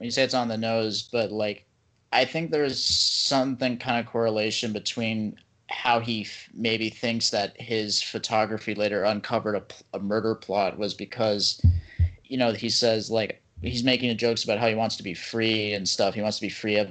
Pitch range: 100-115 Hz